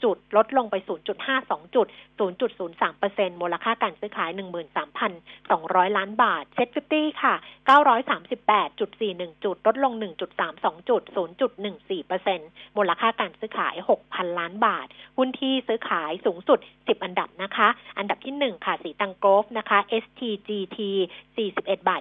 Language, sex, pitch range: Thai, female, 200-265 Hz